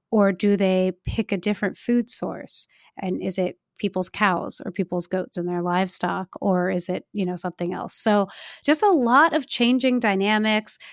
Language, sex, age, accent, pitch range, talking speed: English, female, 30-49, American, 190-230 Hz, 180 wpm